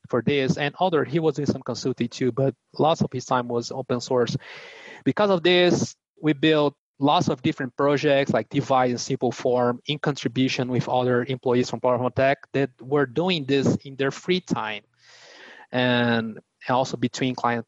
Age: 20-39